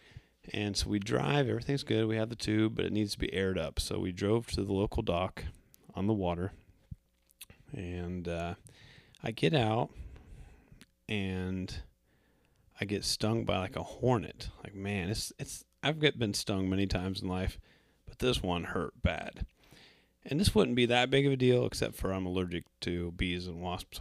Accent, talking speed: American, 180 wpm